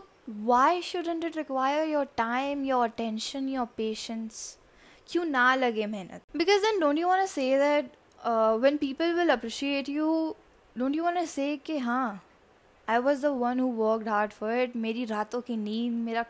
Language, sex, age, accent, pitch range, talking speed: Hindi, female, 10-29, native, 225-280 Hz, 140 wpm